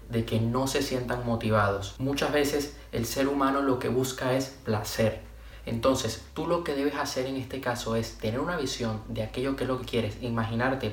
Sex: male